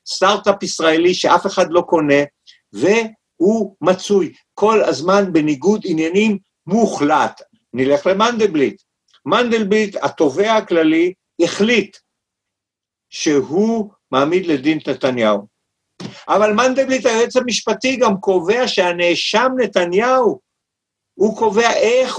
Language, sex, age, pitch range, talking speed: Hebrew, male, 60-79, 140-225 Hz, 90 wpm